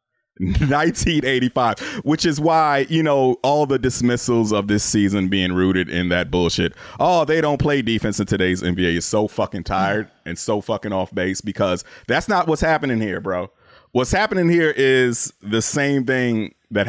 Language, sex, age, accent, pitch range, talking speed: English, male, 30-49, American, 90-125 Hz, 175 wpm